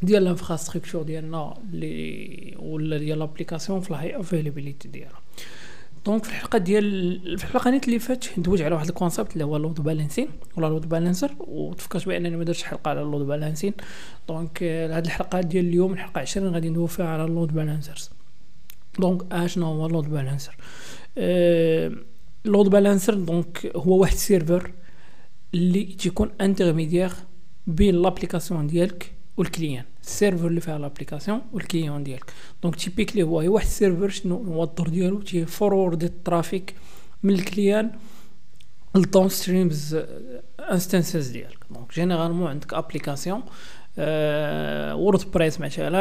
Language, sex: Arabic, male